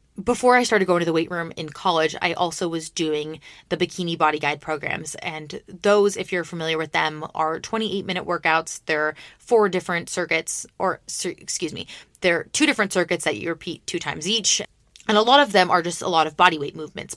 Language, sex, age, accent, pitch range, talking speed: English, female, 20-39, American, 155-200 Hz, 205 wpm